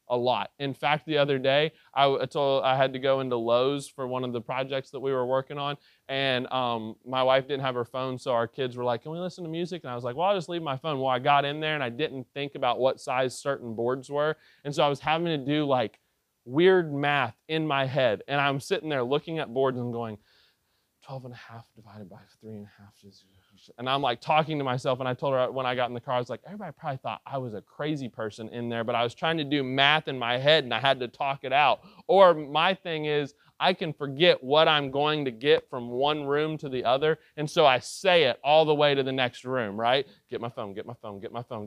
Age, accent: 20-39, American